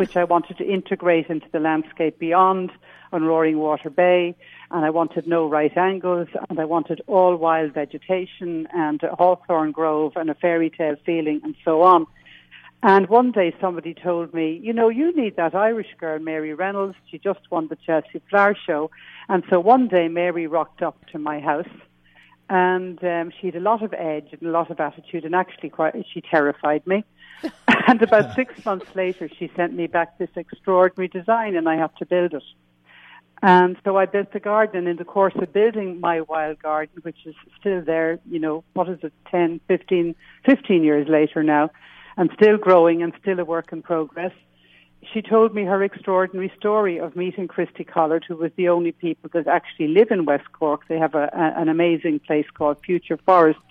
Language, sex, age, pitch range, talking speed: English, female, 60-79, 160-185 Hz, 195 wpm